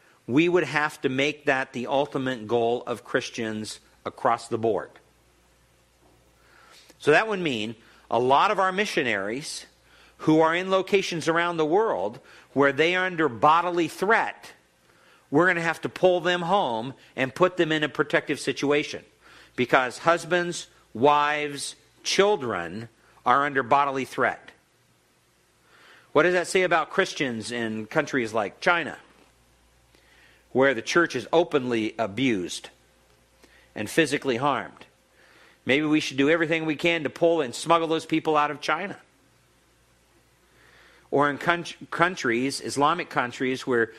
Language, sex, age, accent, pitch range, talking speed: English, male, 50-69, American, 120-165 Hz, 135 wpm